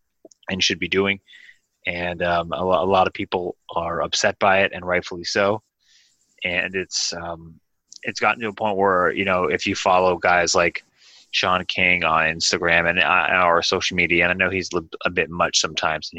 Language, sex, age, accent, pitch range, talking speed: English, male, 20-39, American, 85-100 Hz, 200 wpm